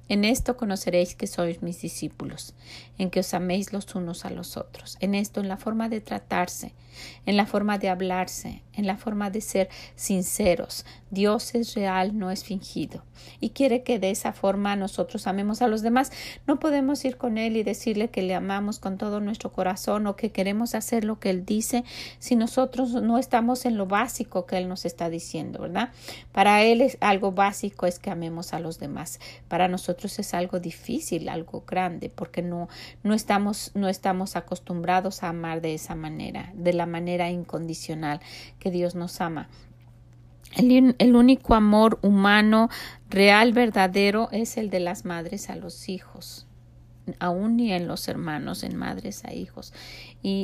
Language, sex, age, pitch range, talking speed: Spanish, female, 40-59, 180-230 Hz, 180 wpm